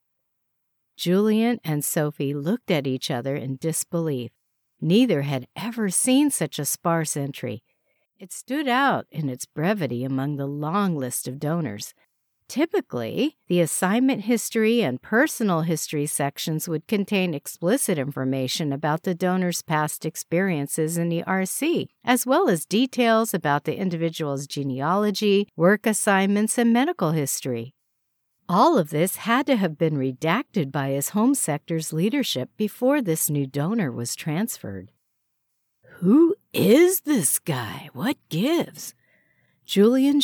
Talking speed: 130 wpm